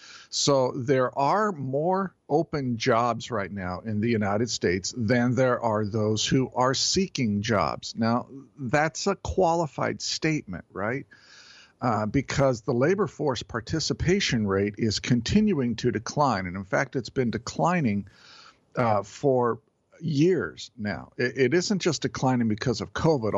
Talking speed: 140 wpm